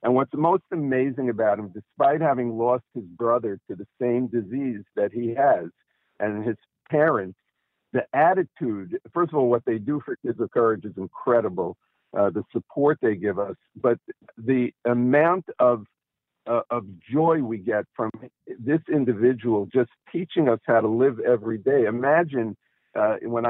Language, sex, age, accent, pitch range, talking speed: English, male, 50-69, American, 110-130 Hz, 165 wpm